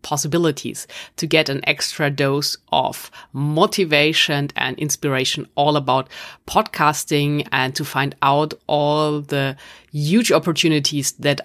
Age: 30-49